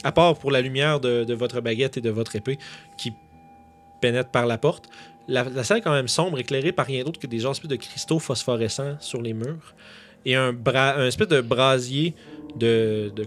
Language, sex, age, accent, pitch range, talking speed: French, male, 30-49, Canadian, 110-135 Hz, 210 wpm